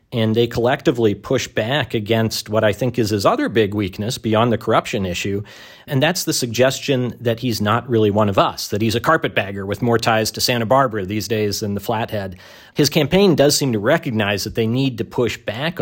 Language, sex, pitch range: English, male, 110-125 Hz